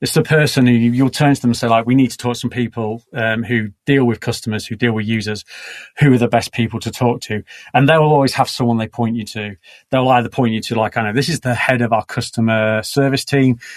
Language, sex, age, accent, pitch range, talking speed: English, male, 30-49, British, 115-135 Hz, 265 wpm